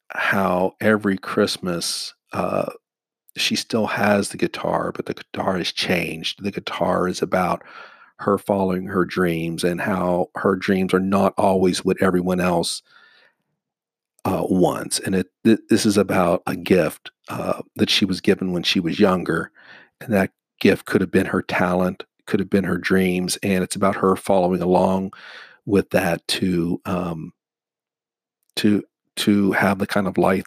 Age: 50-69